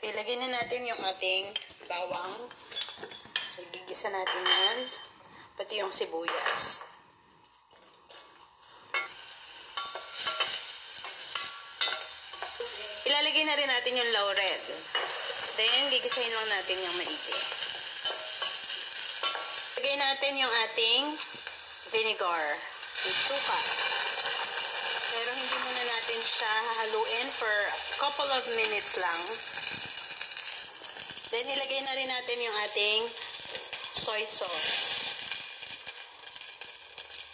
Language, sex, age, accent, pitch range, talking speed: English, female, 20-39, Filipino, 230-295 Hz, 80 wpm